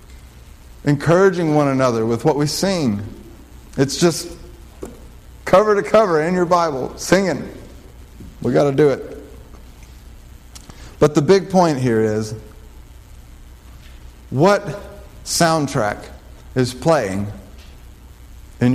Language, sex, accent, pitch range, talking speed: English, male, American, 115-185 Hz, 100 wpm